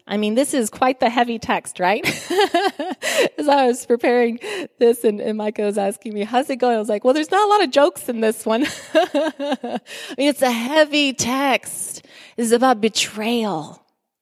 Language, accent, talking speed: English, American, 190 wpm